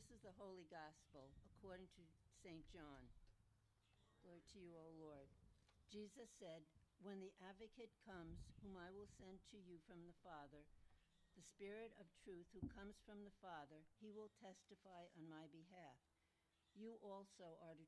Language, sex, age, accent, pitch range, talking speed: English, female, 60-79, American, 160-200 Hz, 160 wpm